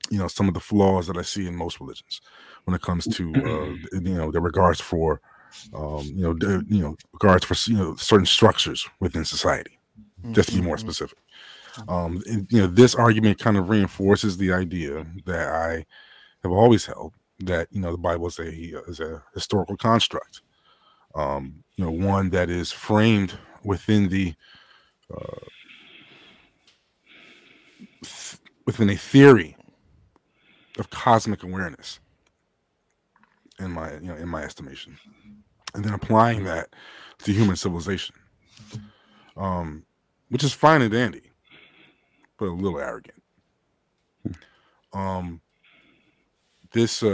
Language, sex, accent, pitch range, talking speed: English, male, American, 90-105 Hz, 140 wpm